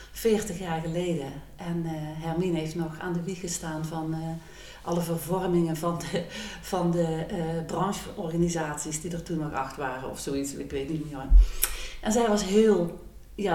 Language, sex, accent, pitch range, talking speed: Dutch, female, Dutch, 170-210 Hz, 175 wpm